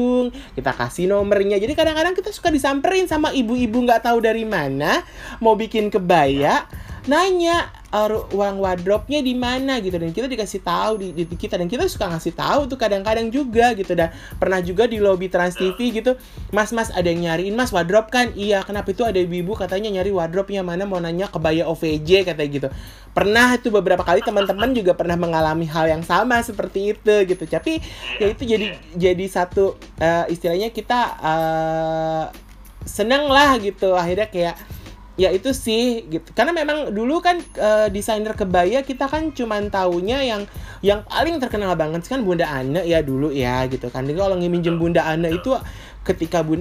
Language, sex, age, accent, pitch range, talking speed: Indonesian, male, 20-39, native, 165-225 Hz, 175 wpm